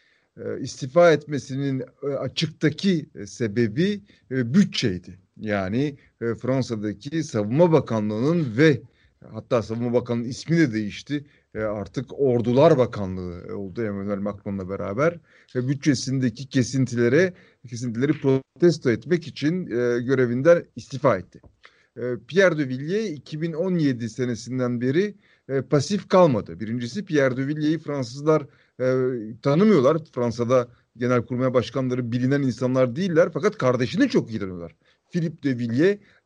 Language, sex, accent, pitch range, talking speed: Turkish, male, native, 120-155 Hz, 100 wpm